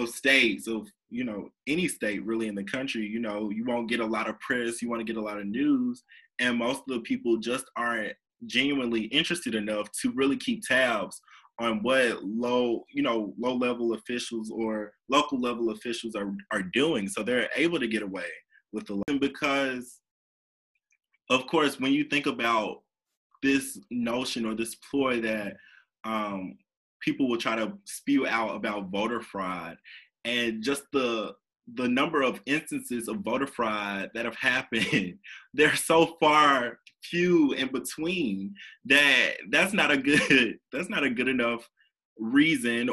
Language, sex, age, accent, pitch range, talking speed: English, male, 20-39, American, 110-140 Hz, 160 wpm